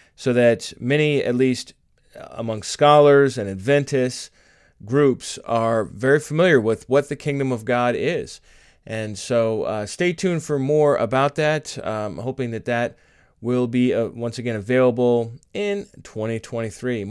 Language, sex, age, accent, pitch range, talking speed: English, male, 30-49, American, 120-150 Hz, 145 wpm